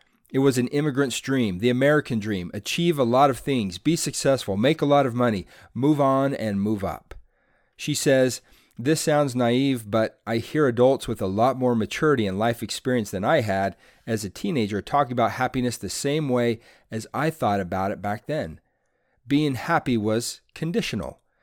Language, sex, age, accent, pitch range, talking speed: English, male, 40-59, American, 110-140 Hz, 180 wpm